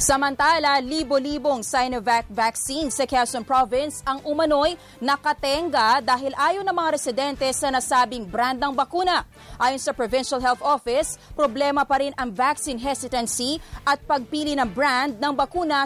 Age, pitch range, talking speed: 30-49, 250-295 Hz, 140 wpm